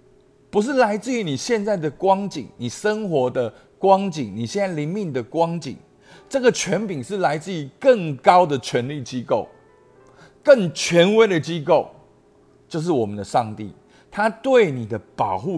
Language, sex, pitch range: Chinese, male, 130-185 Hz